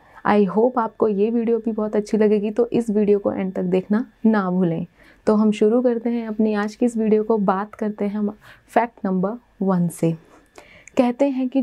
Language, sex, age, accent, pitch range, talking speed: Hindi, female, 30-49, native, 195-240 Hz, 200 wpm